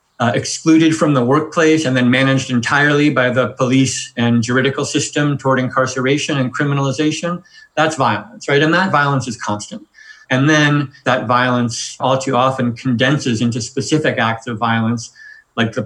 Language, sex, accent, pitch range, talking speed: English, male, American, 120-140 Hz, 160 wpm